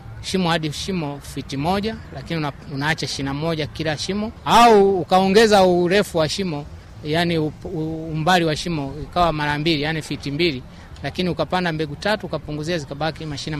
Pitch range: 140-170 Hz